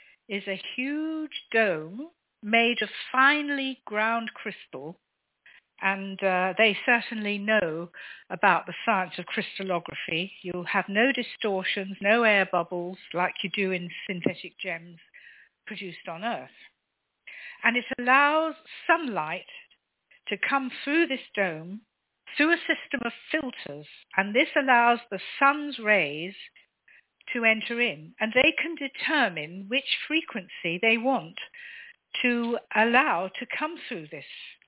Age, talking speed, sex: 60-79, 125 wpm, female